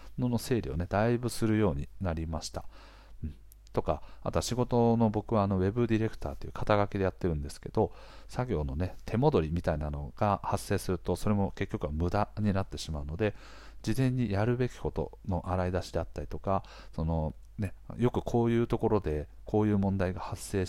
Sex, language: male, Japanese